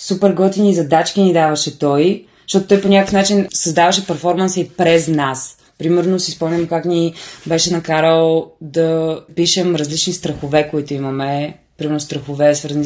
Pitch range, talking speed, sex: 150-185 Hz, 150 wpm, female